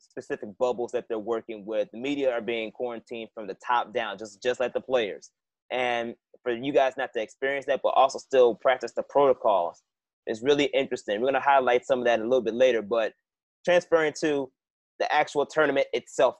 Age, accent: 30-49, American